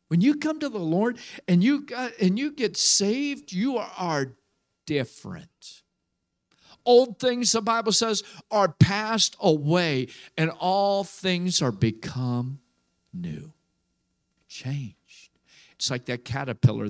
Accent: American